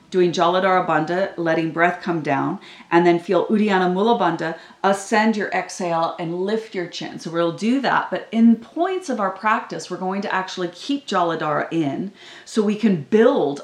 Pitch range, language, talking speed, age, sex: 170-215 Hz, English, 180 wpm, 30-49, female